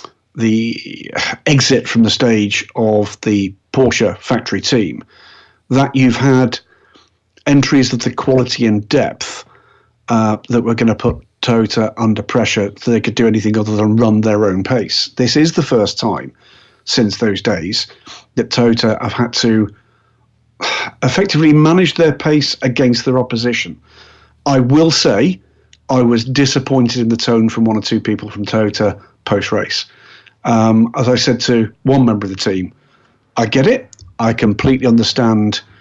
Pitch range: 110-130 Hz